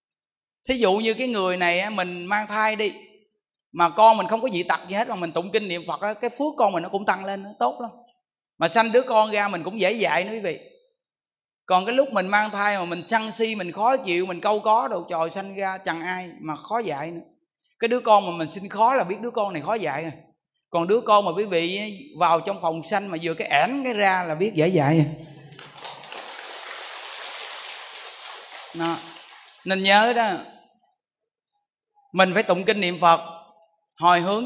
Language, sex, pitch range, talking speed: Vietnamese, male, 170-225 Hz, 210 wpm